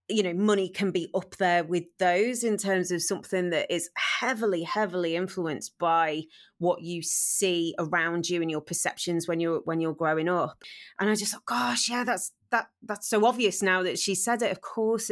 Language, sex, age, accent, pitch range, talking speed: English, female, 30-49, British, 175-205 Hz, 205 wpm